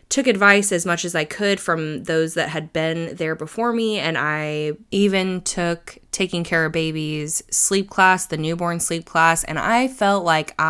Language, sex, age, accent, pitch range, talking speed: English, female, 20-39, American, 150-185 Hz, 185 wpm